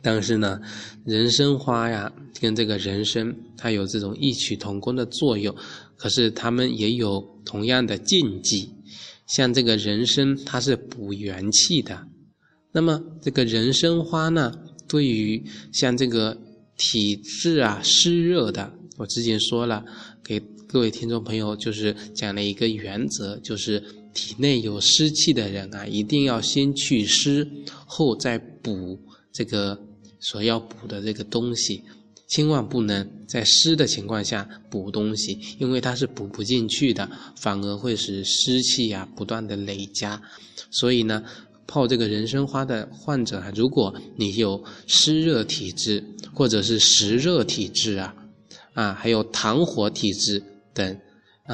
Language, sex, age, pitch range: Chinese, male, 20-39, 105-125 Hz